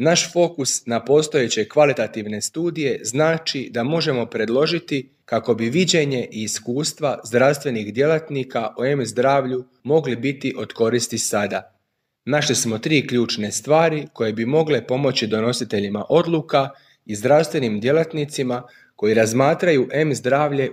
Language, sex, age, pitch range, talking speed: Croatian, male, 30-49, 115-150 Hz, 120 wpm